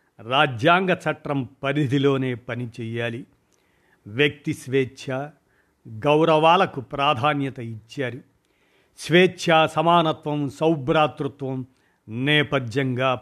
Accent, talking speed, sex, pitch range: native, 60 wpm, male, 130-160 Hz